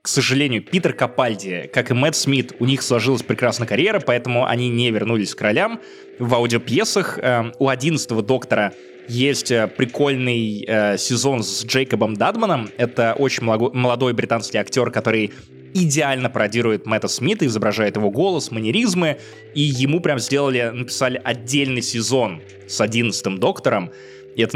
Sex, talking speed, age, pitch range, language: male, 140 wpm, 20-39, 115-145 Hz, Russian